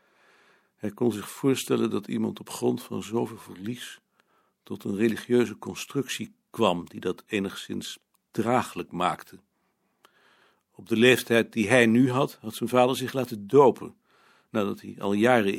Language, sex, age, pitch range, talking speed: Dutch, male, 60-79, 105-130 Hz, 145 wpm